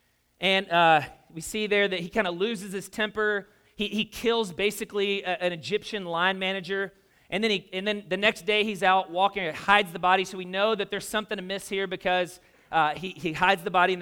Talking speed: 225 wpm